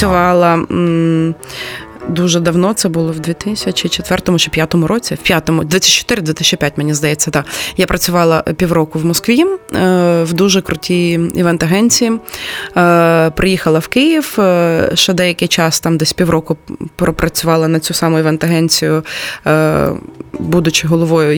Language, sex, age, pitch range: Ukrainian, female, 20-39, 160-185 Hz